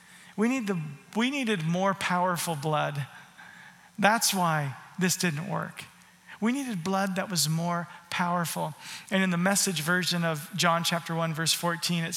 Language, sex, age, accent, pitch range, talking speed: English, male, 40-59, American, 170-200 Hz, 160 wpm